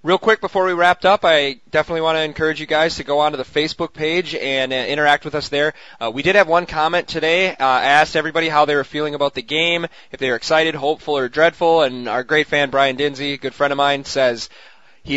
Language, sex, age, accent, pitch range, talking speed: English, male, 20-39, American, 125-155 Hz, 245 wpm